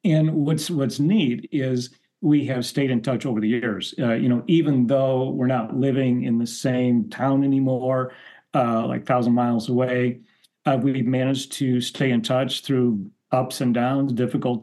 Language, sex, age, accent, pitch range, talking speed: English, male, 40-59, American, 120-145 Hz, 175 wpm